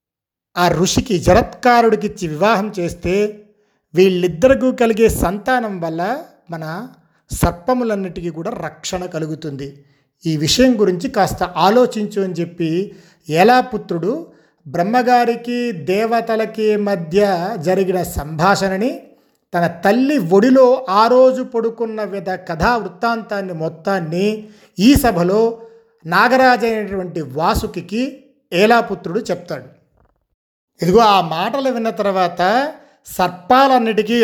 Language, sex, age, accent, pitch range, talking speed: Telugu, male, 50-69, native, 175-230 Hz, 85 wpm